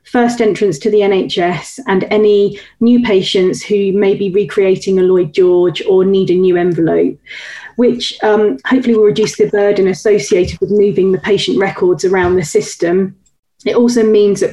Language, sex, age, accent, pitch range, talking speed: English, female, 30-49, British, 185-215 Hz, 170 wpm